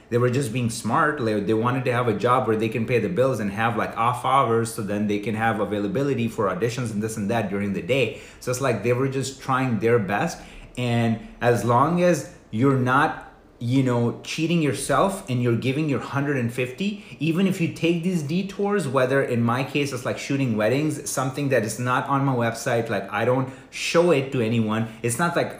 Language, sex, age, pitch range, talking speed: English, male, 30-49, 115-140 Hz, 215 wpm